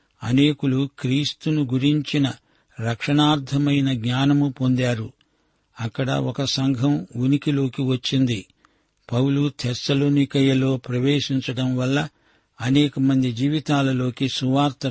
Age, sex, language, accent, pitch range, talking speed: 60-79, male, Telugu, native, 125-140 Hz, 75 wpm